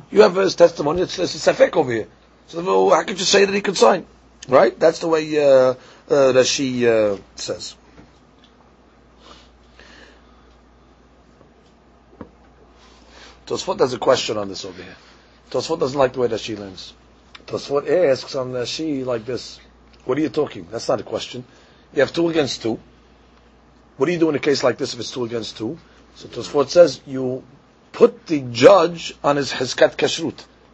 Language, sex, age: English, male, 40-59